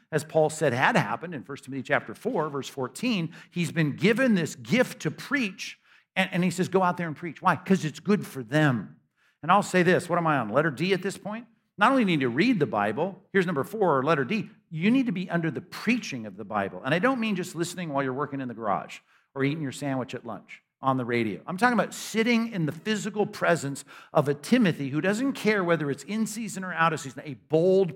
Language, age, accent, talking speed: English, 50-69, American, 250 wpm